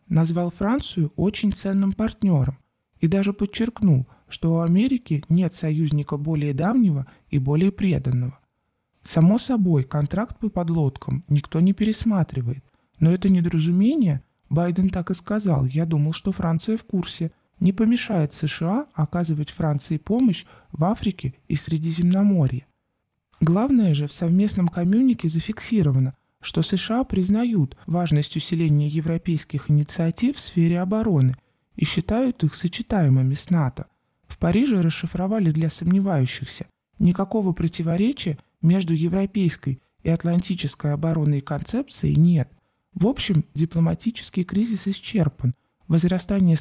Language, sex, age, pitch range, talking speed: Russian, male, 20-39, 150-195 Hz, 115 wpm